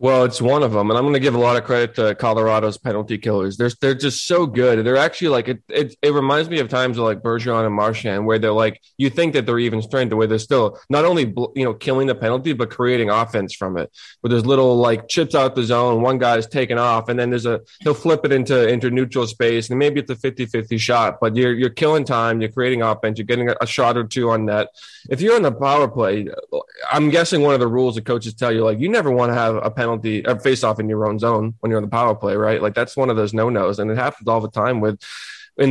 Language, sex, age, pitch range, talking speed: English, male, 20-39, 110-130 Hz, 275 wpm